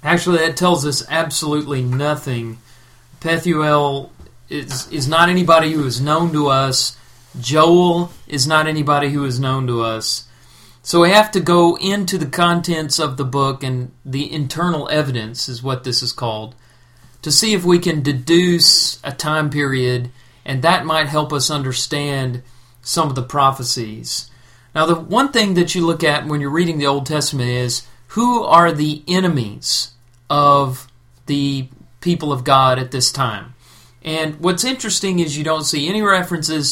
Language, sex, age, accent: English, male, 40-59, American